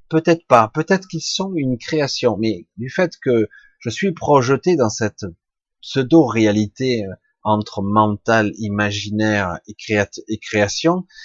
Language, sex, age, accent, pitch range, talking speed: French, male, 30-49, French, 105-135 Hz, 130 wpm